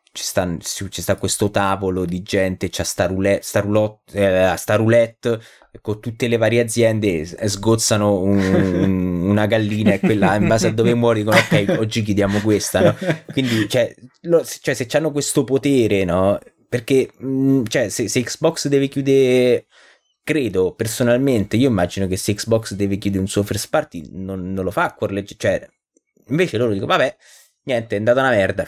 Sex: male